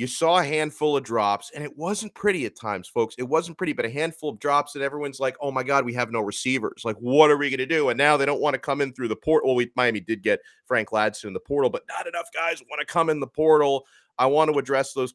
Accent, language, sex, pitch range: American, English, male, 120-175 Hz